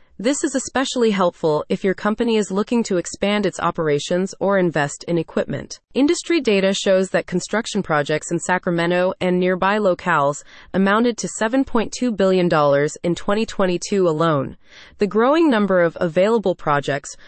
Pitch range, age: 170-225 Hz, 30-49